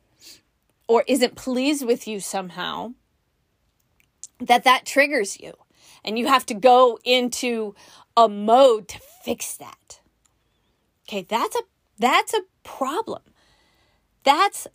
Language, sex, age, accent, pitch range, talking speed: English, female, 30-49, American, 220-305 Hz, 110 wpm